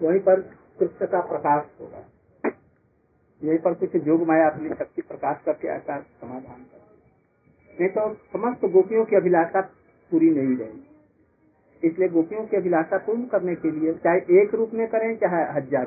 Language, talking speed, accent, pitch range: Hindi, 150 wpm, native, 165-225 Hz